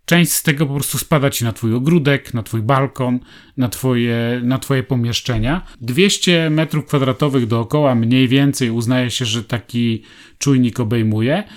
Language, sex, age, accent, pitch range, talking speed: Polish, male, 30-49, native, 120-145 Hz, 145 wpm